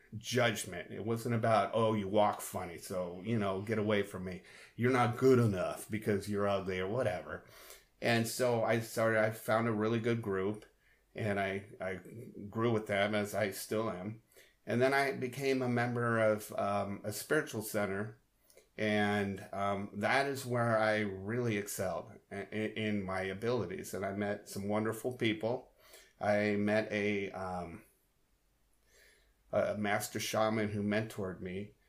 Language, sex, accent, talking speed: English, male, American, 155 wpm